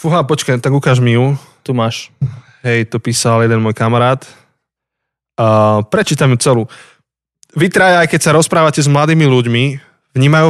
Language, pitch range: Slovak, 115-135 Hz